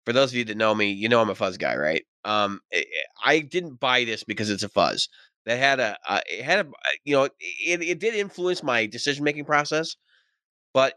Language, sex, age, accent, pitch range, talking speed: English, male, 20-39, American, 100-130 Hz, 230 wpm